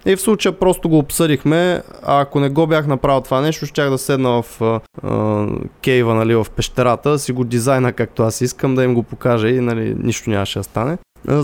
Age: 20-39